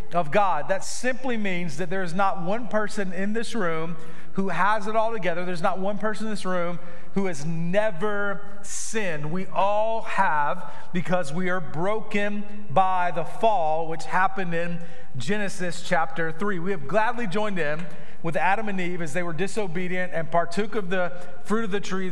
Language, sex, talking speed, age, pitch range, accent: English, male, 180 wpm, 40-59, 175-215 Hz, American